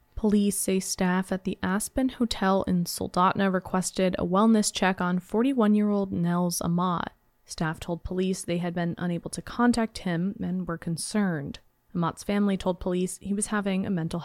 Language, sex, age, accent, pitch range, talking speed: English, female, 20-39, American, 175-205 Hz, 165 wpm